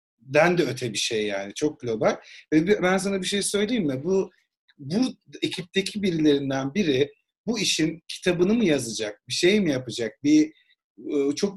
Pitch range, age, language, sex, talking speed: 140-190 Hz, 50-69, Turkish, male, 155 wpm